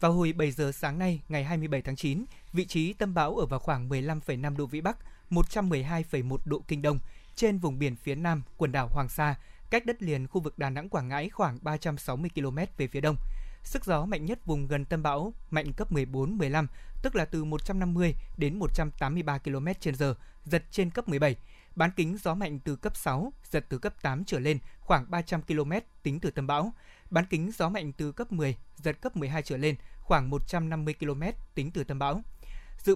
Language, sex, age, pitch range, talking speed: Vietnamese, male, 20-39, 145-180 Hz, 210 wpm